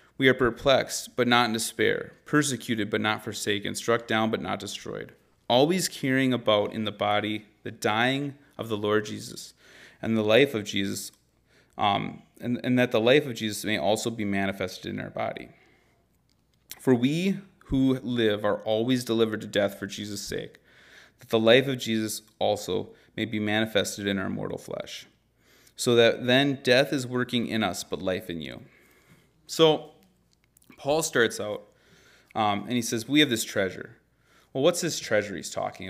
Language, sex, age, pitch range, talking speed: English, male, 30-49, 105-130 Hz, 170 wpm